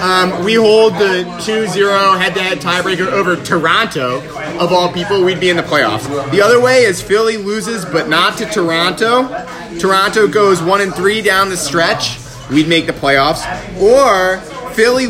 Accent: American